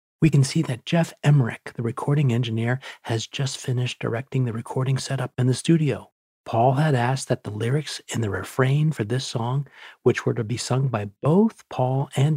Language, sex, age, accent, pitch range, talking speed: English, male, 40-59, American, 120-150 Hz, 195 wpm